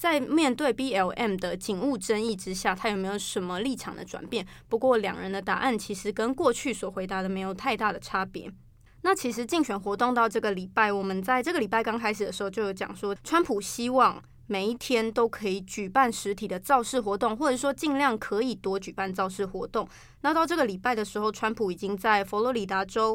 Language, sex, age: Chinese, female, 20-39